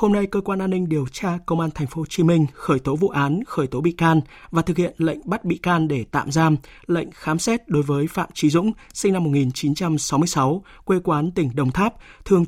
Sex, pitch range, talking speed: male, 145-185 Hz, 240 wpm